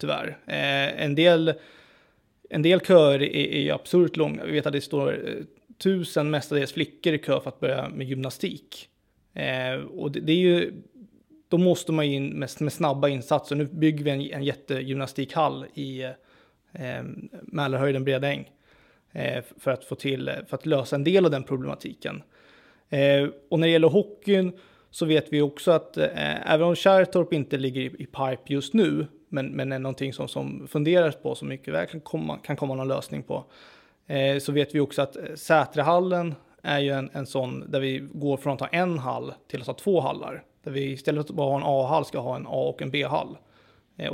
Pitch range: 135-160 Hz